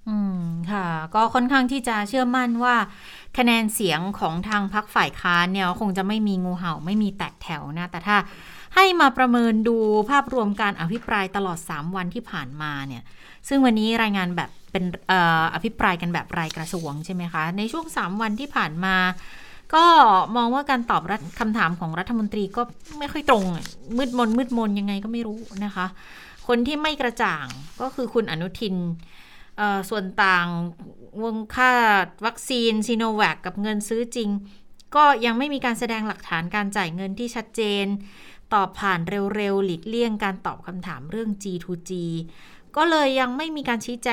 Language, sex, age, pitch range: Thai, female, 30-49, 180-235 Hz